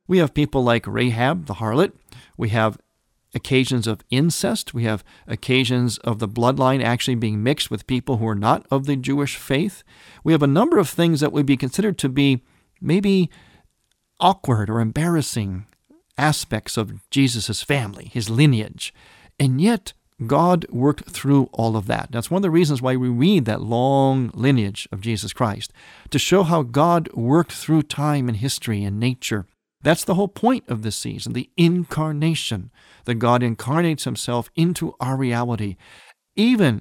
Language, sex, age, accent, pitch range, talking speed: English, male, 50-69, American, 115-160 Hz, 165 wpm